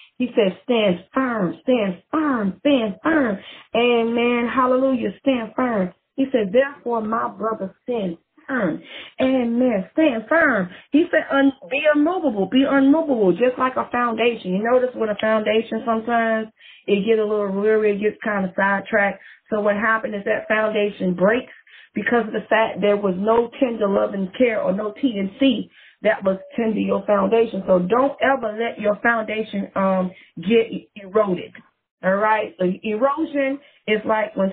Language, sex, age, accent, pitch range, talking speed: English, female, 30-49, American, 200-245 Hz, 160 wpm